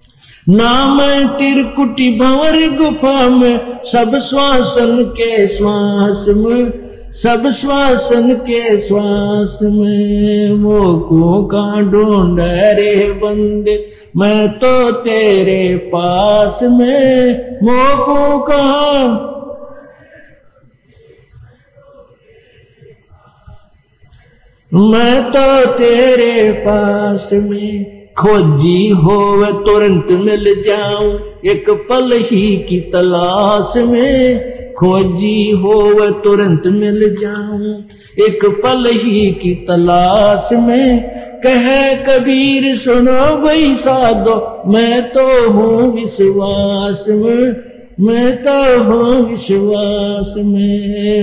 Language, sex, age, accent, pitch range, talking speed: Hindi, male, 50-69, native, 205-250 Hz, 75 wpm